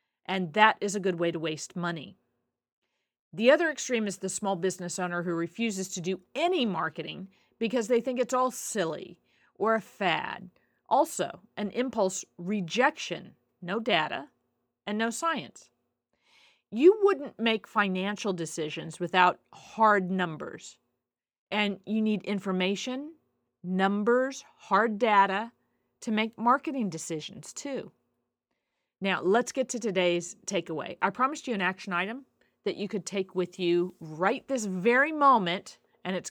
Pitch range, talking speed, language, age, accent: 180-230 Hz, 140 wpm, English, 40-59, American